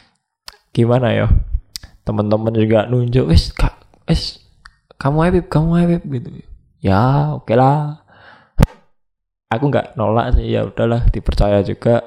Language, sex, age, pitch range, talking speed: Indonesian, male, 20-39, 110-140 Hz, 125 wpm